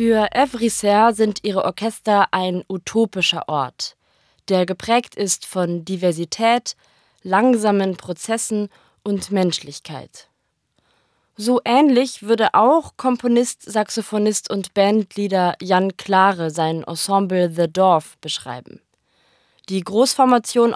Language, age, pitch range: German, 20-39, 185-230 Hz